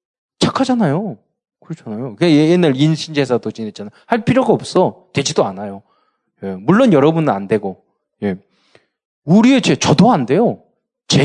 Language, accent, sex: Korean, native, male